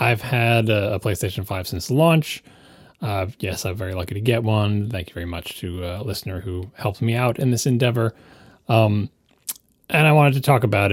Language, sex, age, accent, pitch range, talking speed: English, male, 30-49, American, 95-130 Hz, 200 wpm